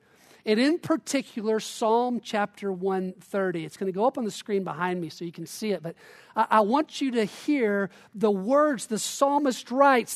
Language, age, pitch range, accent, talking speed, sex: English, 50-69, 190-250 Hz, American, 185 wpm, male